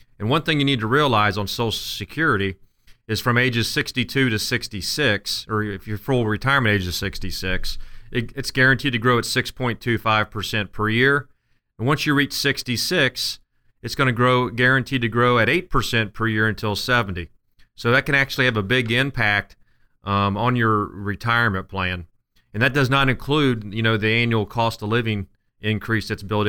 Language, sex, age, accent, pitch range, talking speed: English, male, 40-59, American, 105-130 Hz, 175 wpm